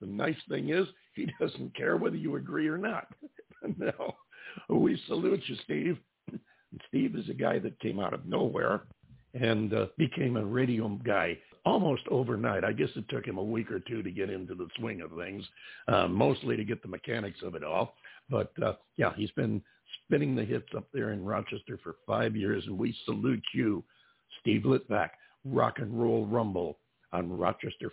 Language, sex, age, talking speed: English, male, 60-79, 185 wpm